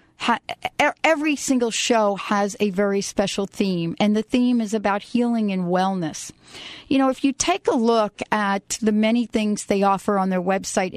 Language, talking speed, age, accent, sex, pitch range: English, 175 wpm, 40-59, American, female, 195-230 Hz